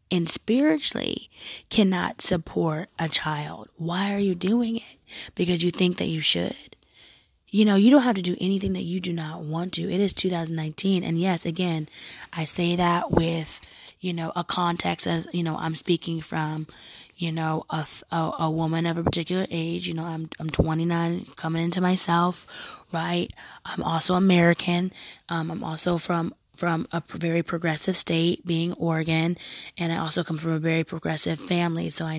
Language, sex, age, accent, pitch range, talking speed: English, female, 20-39, American, 160-175 Hz, 175 wpm